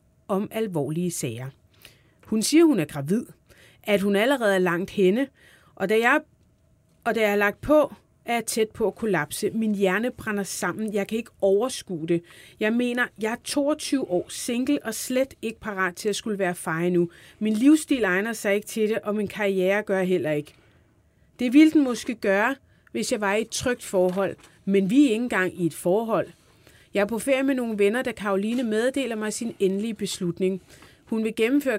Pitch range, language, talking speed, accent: 185-230 Hz, Danish, 200 wpm, native